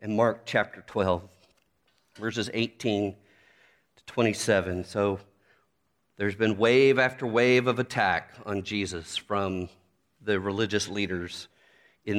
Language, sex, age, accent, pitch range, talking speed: English, male, 40-59, American, 95-115 Hz, 115 wpm